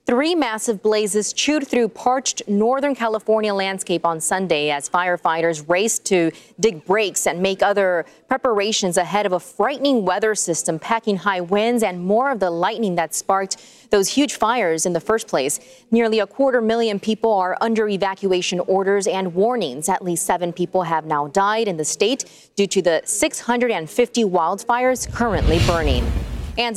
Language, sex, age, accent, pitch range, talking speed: English, female, 30-49, American, 185-230 Hz, 165 wpm